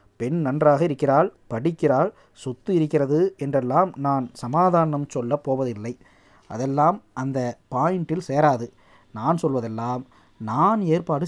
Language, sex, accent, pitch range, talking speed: Tamil, male, native, 125-170 Hz, 85 wpm